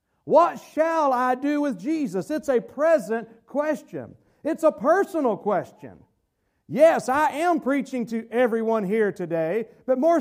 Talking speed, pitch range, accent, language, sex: 140 wpm, 235-310 Hz, American, English, male